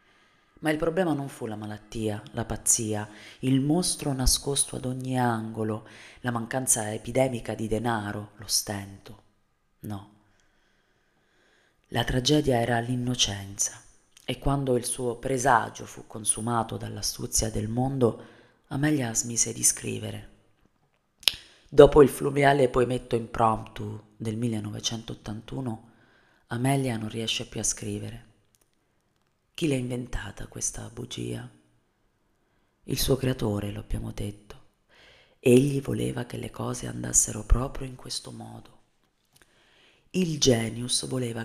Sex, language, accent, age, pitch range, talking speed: female, Italian, native, 30-49, 105-125 Hz, 110 wpm